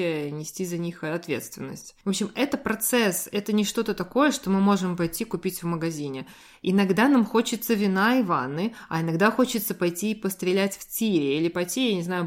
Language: Russian